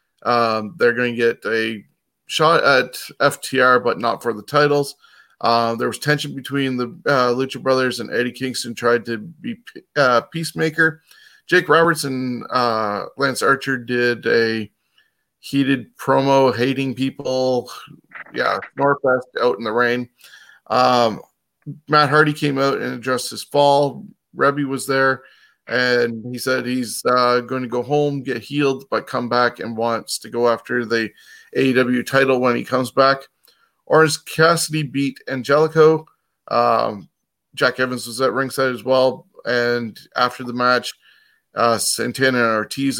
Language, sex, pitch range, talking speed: English, male, 120-135 Hz, 150 wpm